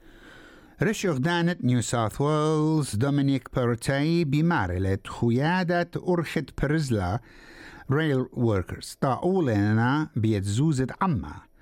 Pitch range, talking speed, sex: 110-150 Hz, 85 wpm, male